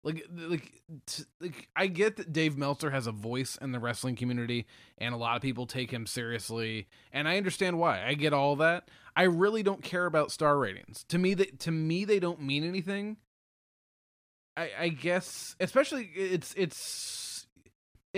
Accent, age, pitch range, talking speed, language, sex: American, 20-39, 125-175 Hz, 180 wpm, English, male